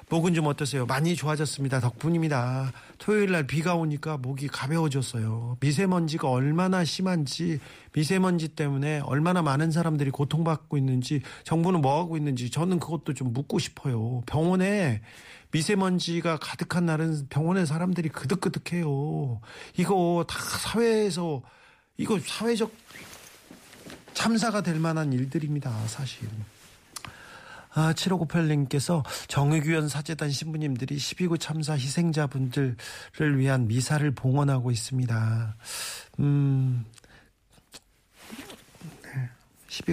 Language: Korean